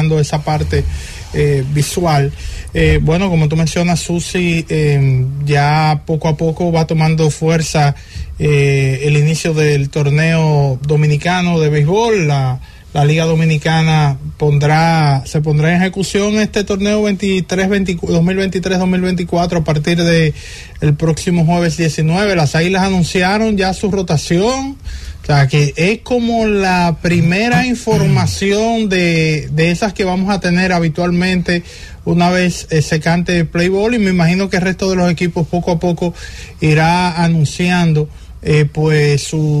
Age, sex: 20-39, male